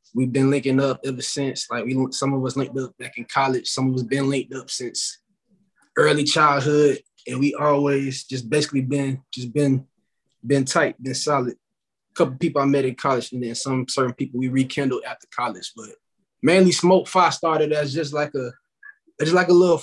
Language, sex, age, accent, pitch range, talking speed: English, male, 20-39, American, 130-165 Hz, 200 wpm